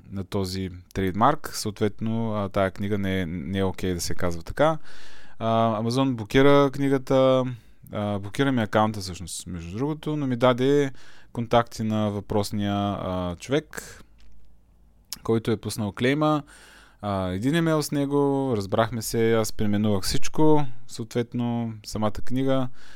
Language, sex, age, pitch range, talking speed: Bulgarian, male, 20-39, 95-130 Hz, 130 wpm